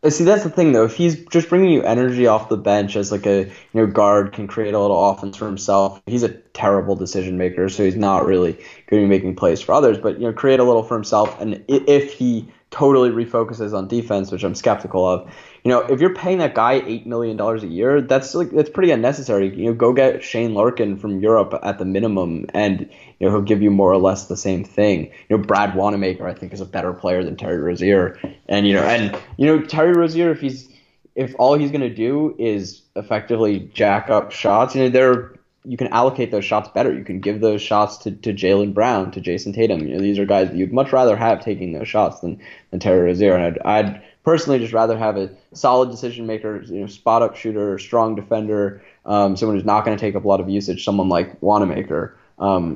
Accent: American